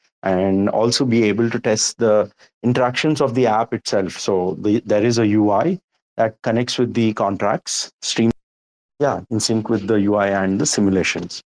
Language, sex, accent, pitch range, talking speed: English, male, Indian, 100-125 Hz, 170 wpm